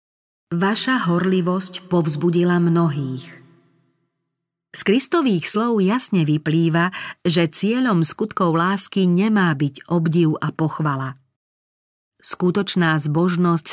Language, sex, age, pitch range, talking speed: Slovak, female, 40-59, 155-200 Hz, 85 wpm